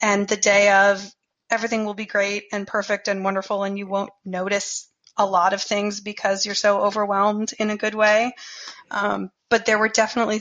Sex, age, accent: female, 30-49, American